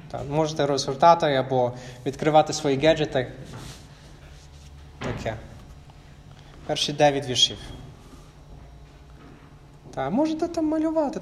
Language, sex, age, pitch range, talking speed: Ukrainian, male, 20-39, 135-180 Hz, 65 wpm